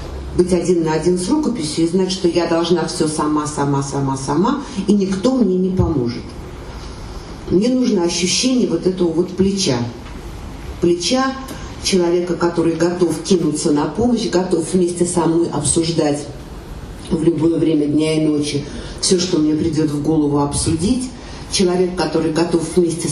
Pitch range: 150-190 Hz